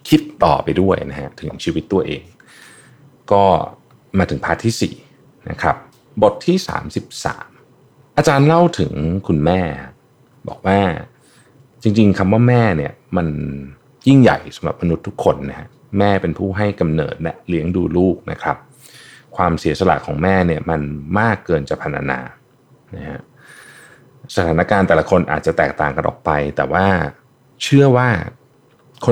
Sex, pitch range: male, 85-125 Hz